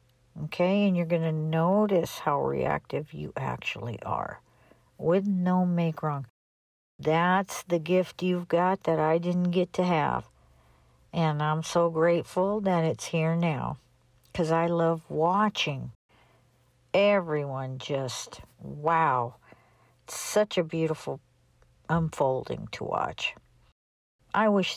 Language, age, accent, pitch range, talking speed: English, 60-79, American, 150-190 Hz, 120 wpm